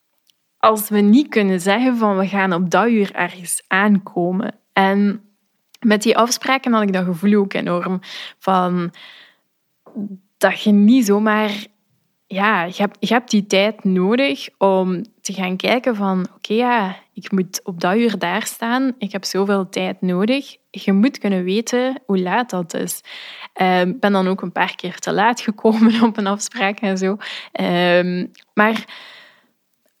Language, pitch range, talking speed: Dutch, 190-225 Hz, 150 wpm